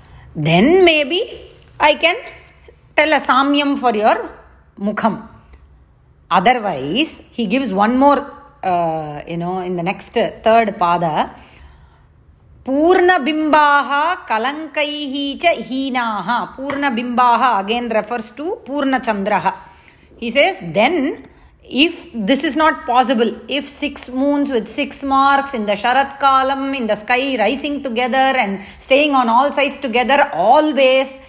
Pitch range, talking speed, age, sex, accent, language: 240-295 Hz, 120 wpm, 30-49, female, Indian, English